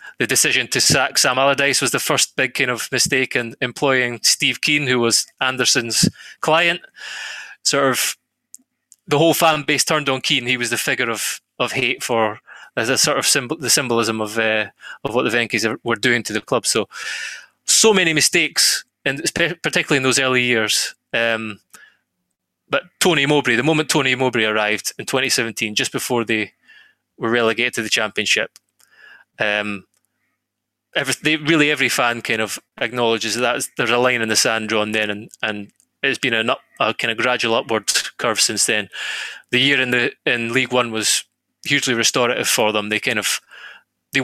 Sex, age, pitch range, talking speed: male, 20-39, 110-140 Hz, 180 wpm